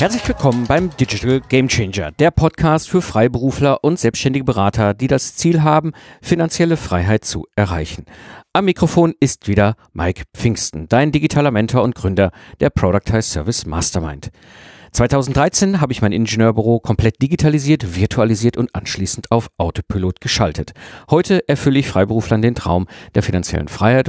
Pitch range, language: 95-140 Hz, German